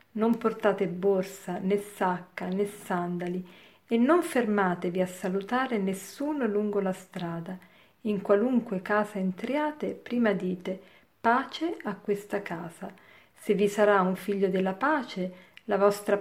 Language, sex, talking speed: Italian, female, 130 wpm